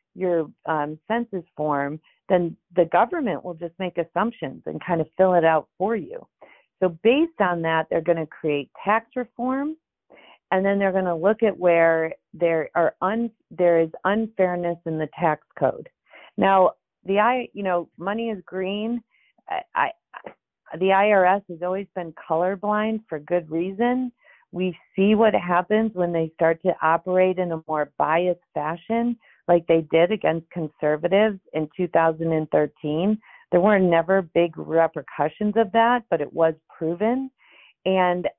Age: 40-59